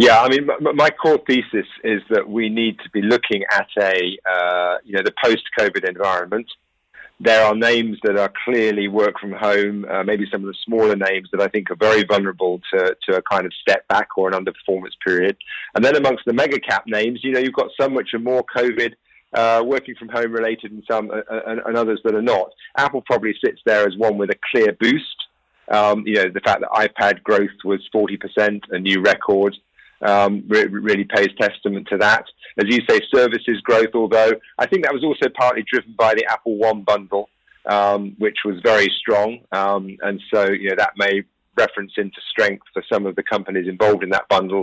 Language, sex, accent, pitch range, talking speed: English, male, British, 100-115 Hz, 210 wpm